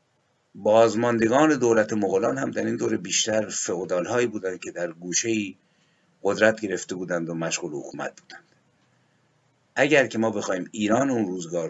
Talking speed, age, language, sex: 140 wpm, 50-69, Persian, male